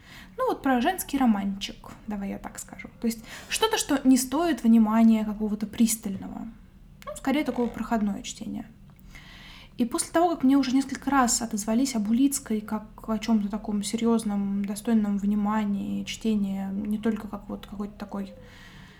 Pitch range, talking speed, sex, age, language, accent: 210-245 Hz, 150 wpm, female, 20-39, Russian, native